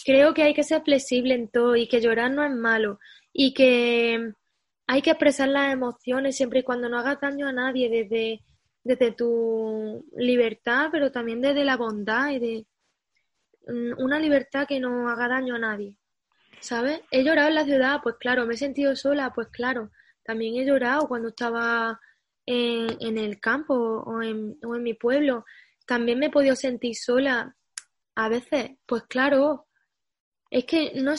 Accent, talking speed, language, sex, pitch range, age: Spanish, 170 wpm, Spanish, female, 235-270 Hz, 10-29